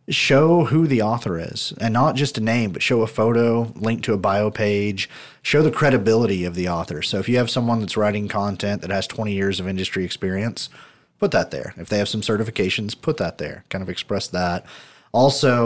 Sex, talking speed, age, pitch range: male, 215 wpm, 30-49, 95-115 Hz